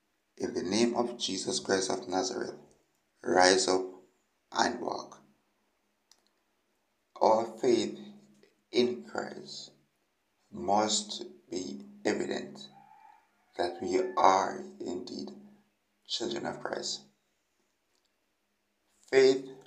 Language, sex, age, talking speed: English, male, 60-79, 80 wpm